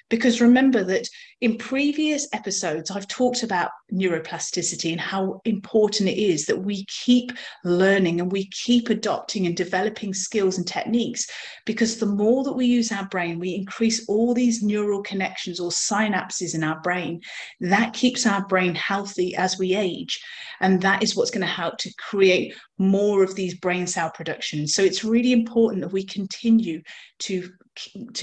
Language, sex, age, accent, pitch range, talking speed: English, female, 30-49, British, 185-230 Hz, 170 wpm